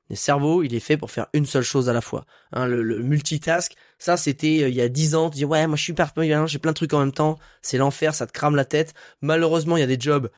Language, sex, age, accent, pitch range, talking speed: French, male, 20-39, French, 120-150 Hz, 310 wpm